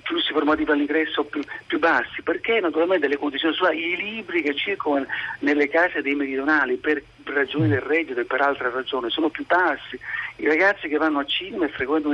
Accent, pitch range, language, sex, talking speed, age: native, 140-220 Hz, Italian, male, 195 wpm, 50-69